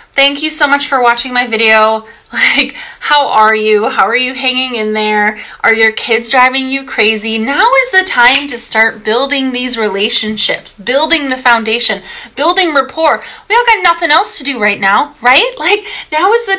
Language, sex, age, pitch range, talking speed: English, female, 20-39, 220-310 Hz, 190 wpm